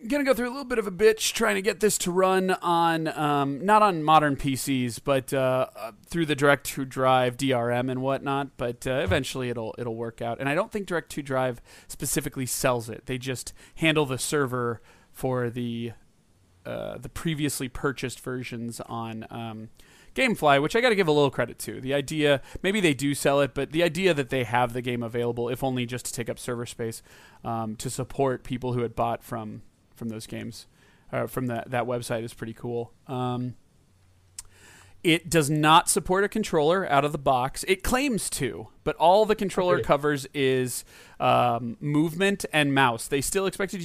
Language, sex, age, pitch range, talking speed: English, male, 30-49, 120-160 Hz, 190 wpm